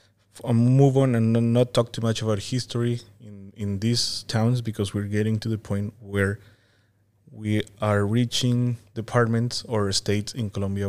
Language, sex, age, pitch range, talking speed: English, male, 20-39, 100-115 Hz, 160 wpm